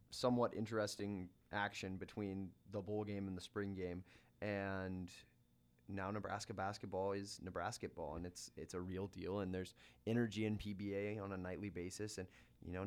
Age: 20-39